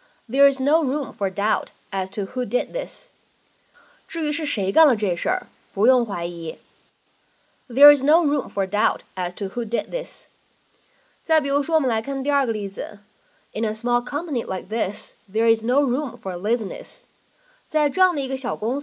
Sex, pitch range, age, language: female, 215-285 Hz, 20-39, Chinese